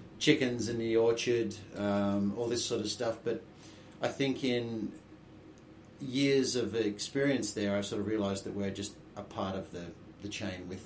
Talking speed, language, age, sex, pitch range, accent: 175 wpm, English, 30-49, male, 100-115 Hz, Australian